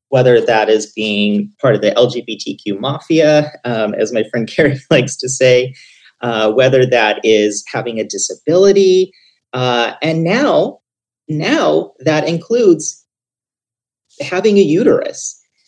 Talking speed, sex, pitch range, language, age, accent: 125 wpm, male, 115-165 Hz, English, 30-49, American